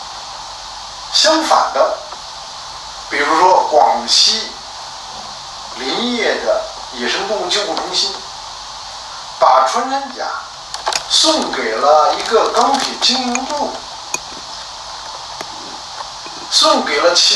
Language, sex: Chinese, male